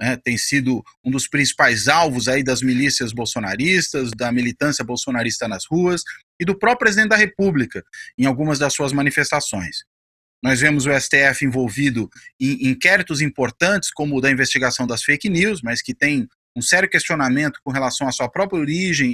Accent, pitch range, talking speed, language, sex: Brazilian, 130-180 Hz, 170 wpm, Portuguese, male